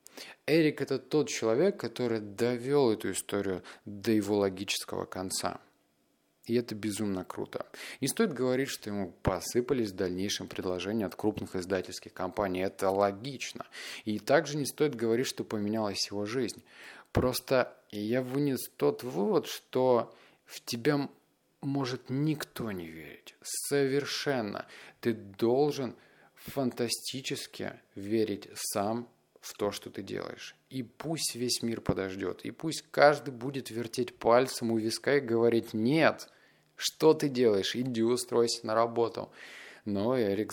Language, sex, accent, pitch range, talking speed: Russian, male, native, 105-135 Hz, 130 wpm